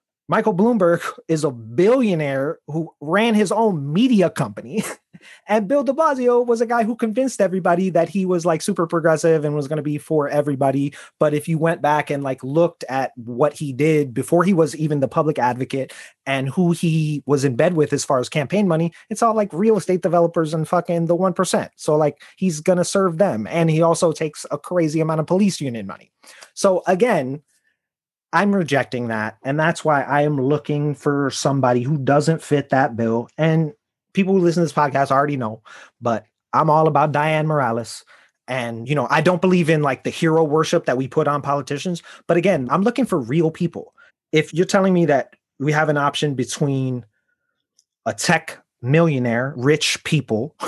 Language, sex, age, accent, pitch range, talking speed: English, male, 30-49, American, 140-175 Hz, 195 wpm